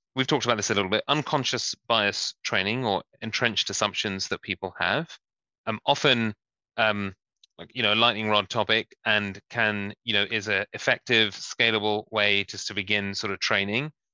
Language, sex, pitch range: English, male, 105-120 Hz